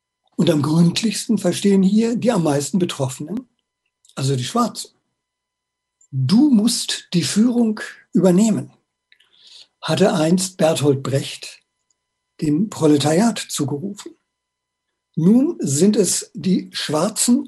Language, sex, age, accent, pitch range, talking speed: German, male, 60-79, German, 150-220 Hz, 100 wpm